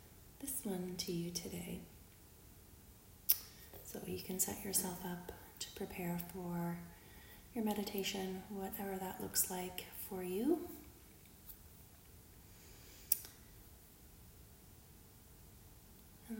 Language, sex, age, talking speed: English, female, 30-49, 85 wpm